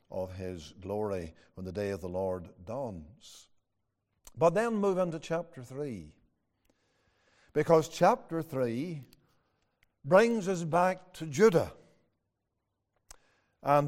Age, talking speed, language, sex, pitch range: 60-79, 110 wpm, English, male, 115-180 Hz